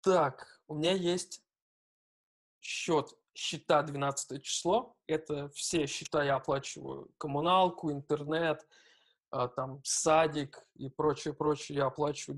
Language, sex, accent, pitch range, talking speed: Russian, male, native, 145-170 Hz, 100 wpm